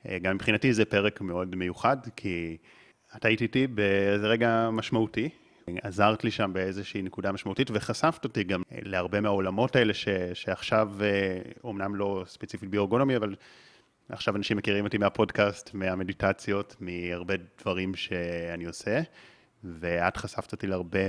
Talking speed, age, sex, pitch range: 130 wpm, 30-49, male, 95-115 Hz